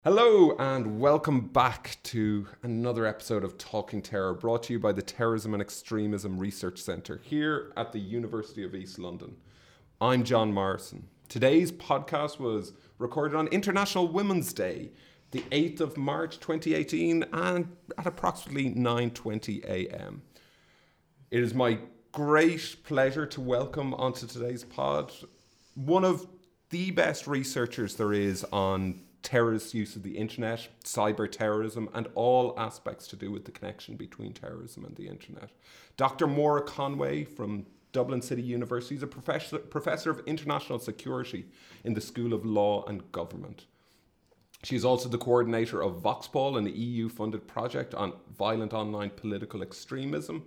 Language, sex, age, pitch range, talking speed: English, male, 30-49, 105-140 Hz, 140 wpm